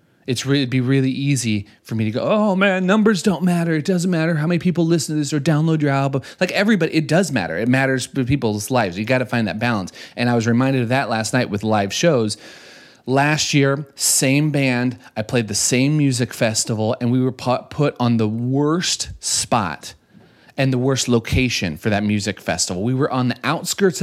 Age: 30-49